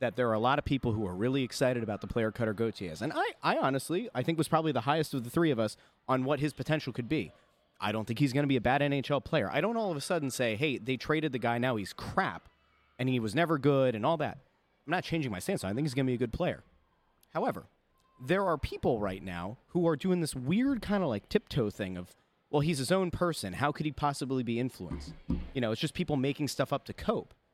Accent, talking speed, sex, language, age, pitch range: American, 270 wpm, male, English, 30-49, 110-155 Hz